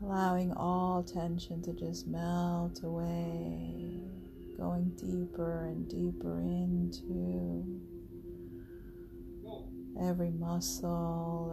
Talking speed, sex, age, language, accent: 75 wpm, female, 30-49, English, American